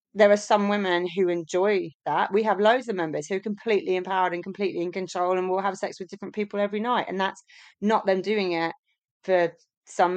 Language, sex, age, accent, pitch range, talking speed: English, female, 30-49, British, 170-205 Hz, 220 wpm